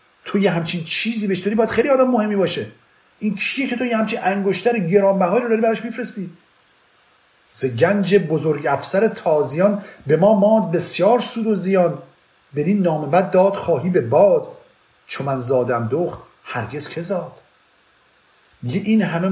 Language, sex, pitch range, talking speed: Persian, male, 145-210 Hz, 155 wpm